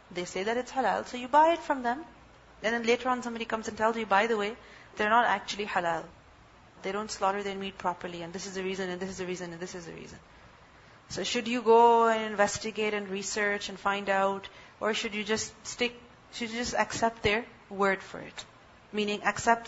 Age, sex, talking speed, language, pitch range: 30-49, female, 215 wpm, English, 205-260 Hz